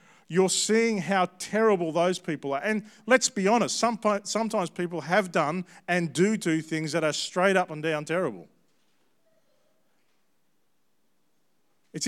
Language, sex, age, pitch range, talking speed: English, male, 40-59, 150-190 Hz, 135 wpm